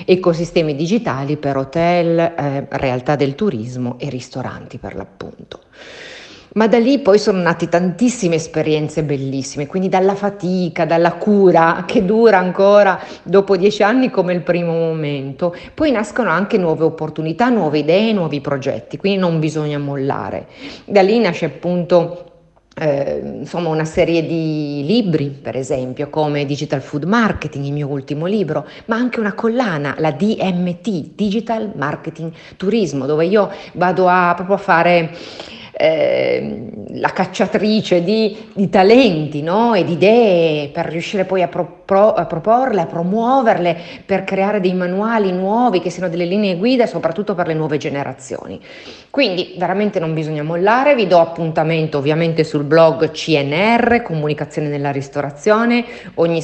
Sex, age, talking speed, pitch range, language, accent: female, 40-59, 145 wpm, 155-205 Hz, Italian, native